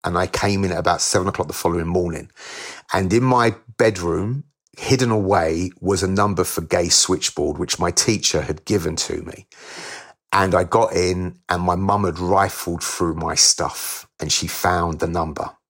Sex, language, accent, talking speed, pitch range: male, English, British, 180 wpm, 90-110 Hz